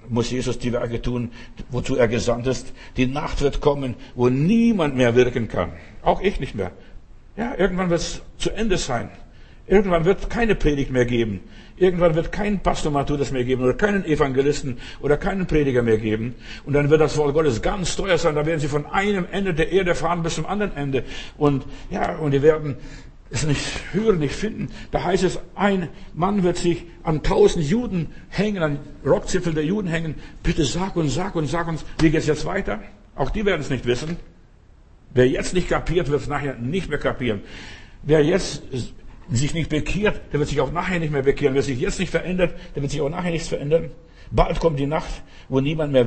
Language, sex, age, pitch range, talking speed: German, male, 60-79, 130-175 Hz, 205 wpm